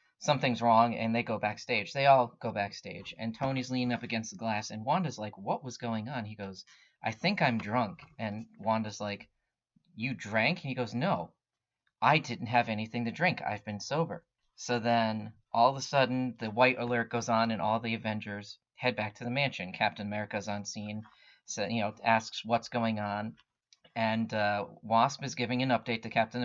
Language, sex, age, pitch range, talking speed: English, male, 30-49, 110-135 Hz, 200 wpm